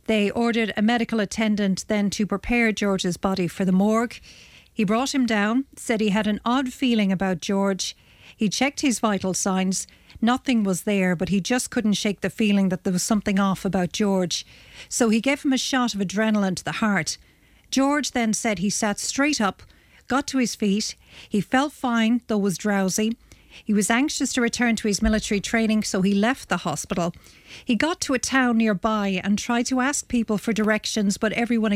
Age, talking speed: 40-59, 195 wpm